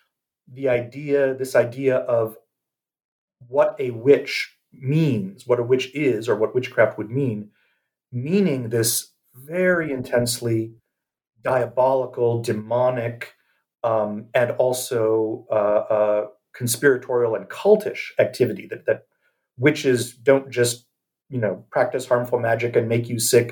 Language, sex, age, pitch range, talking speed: English, male, 40-59, 115-150 Hz, 120 wpm